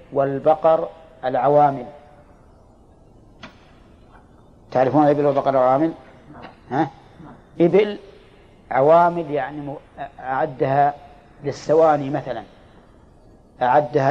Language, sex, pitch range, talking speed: Arabic, male, 135-165 Hz, 65 wpm